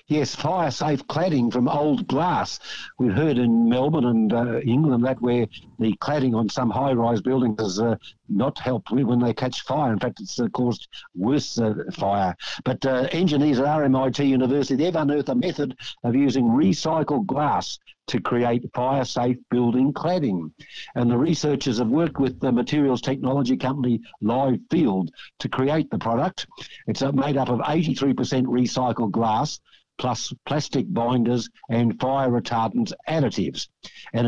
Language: English